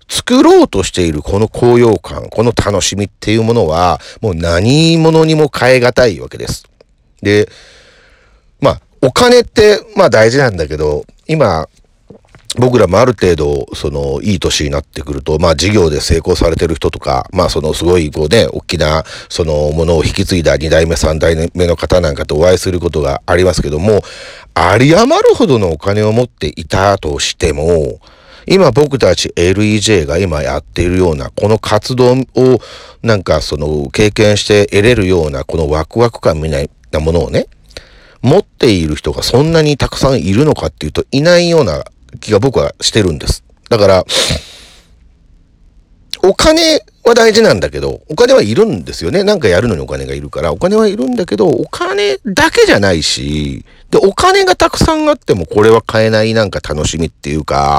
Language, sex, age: Japanese, male, 40-59